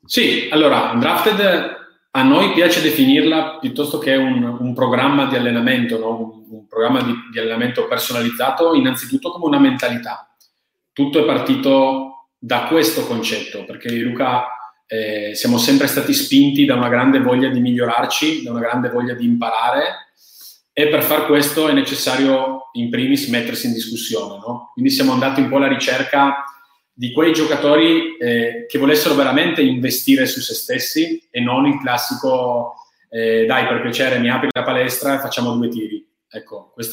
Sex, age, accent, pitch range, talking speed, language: male, 30-49, native, 120-155 Hz, 160 wpm, Italian